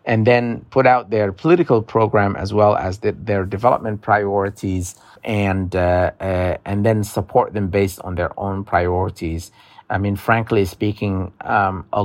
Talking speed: 160 wpm